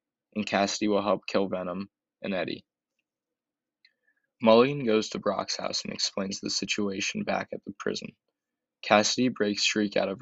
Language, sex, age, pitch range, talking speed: English, male, 20-39, 100-110 Hz, 155 wpm